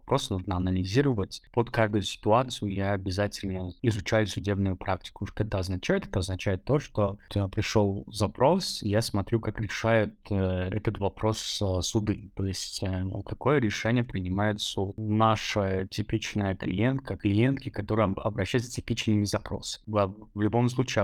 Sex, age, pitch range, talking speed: male, 20-39, 95-115 Hz, 130 wpm